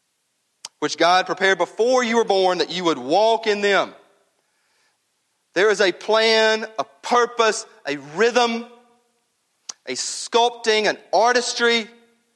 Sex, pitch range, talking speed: male, 190-245 Hz, 120 wpm